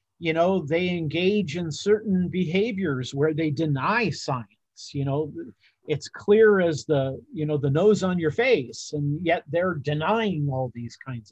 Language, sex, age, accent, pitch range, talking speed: English, male, 50-69, American, 130-180 Hz, 165 wpm